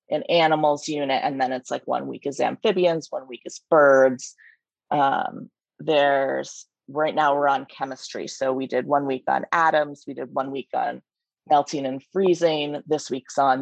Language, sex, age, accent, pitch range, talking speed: English, female, 30-49, American, 140-165 Hz, 175 wpm